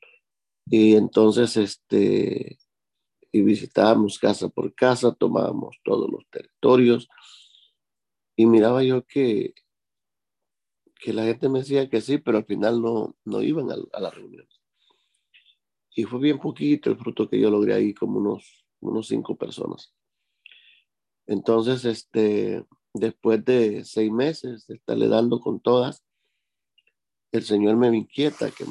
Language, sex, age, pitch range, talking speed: Spanish, male, 50-69, 110-130 Hz, 135 wpm